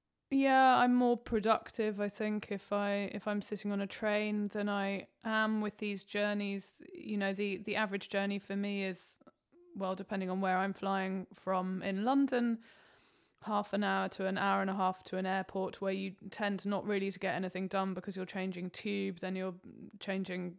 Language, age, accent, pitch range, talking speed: English, 20-39, British, 185-215 Hz, 195 wpm